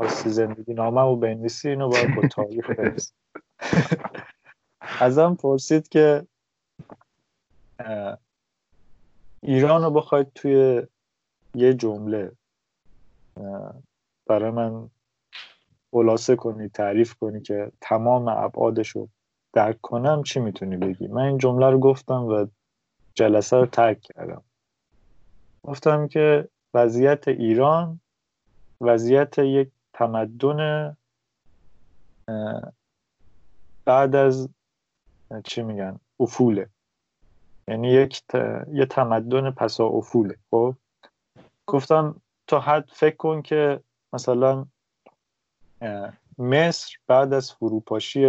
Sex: male